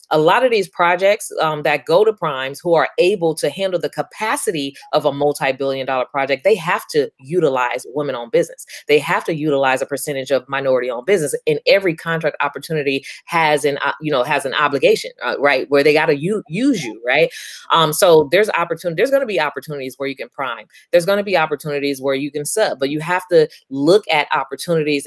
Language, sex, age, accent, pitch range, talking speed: English, female, 20-39, American, 140-220 Hz, 210 wpm